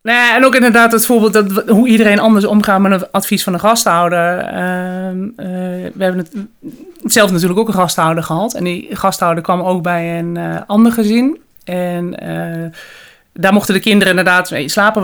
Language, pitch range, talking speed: Dutch, 175-205 Hz, 190 wpm